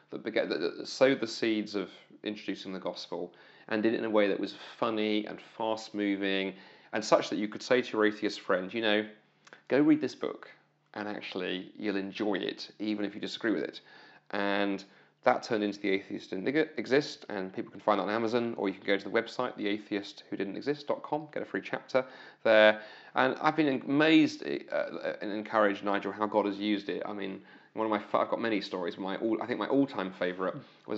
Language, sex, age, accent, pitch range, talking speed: English, male, 30-49, British, 95-110 Hz, 200 wpm